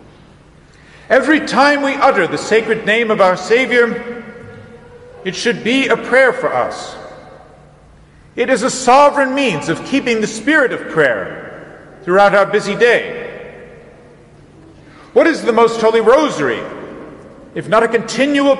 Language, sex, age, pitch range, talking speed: English, male, 50-69, 185-240 Hz, 135 wpm